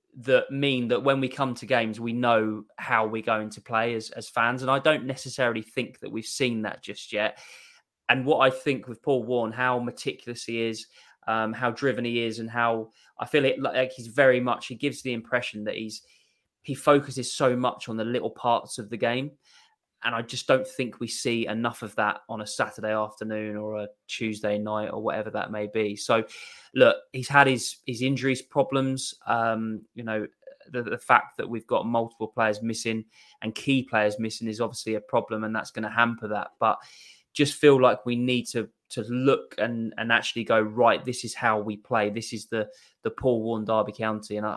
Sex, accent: male, British